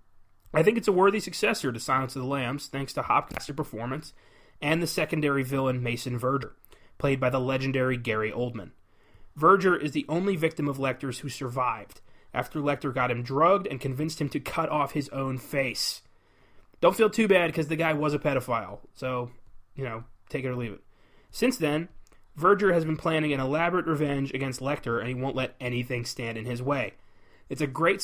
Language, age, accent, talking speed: English, 30-49, American, 195 wpm